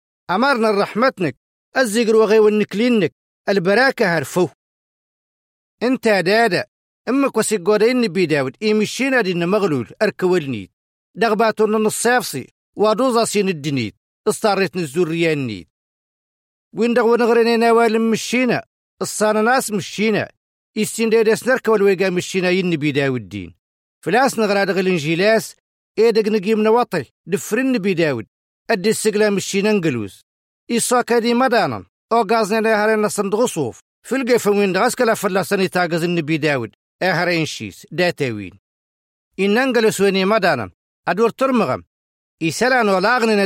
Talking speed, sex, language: 110 wpm, male, Arabic